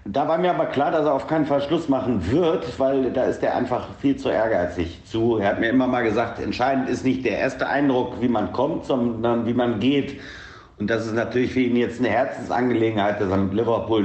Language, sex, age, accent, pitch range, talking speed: German, male, 60-79, German, 100-125 Hz, 225 wpm